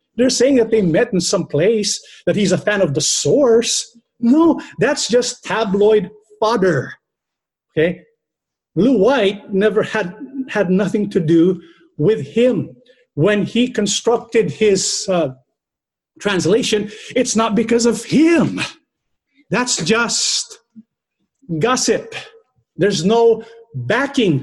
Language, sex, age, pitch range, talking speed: English, male, 50-69, 175-245 Hz, 120 wpm